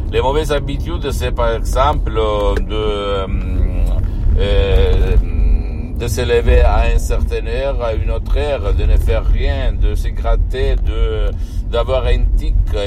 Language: Italian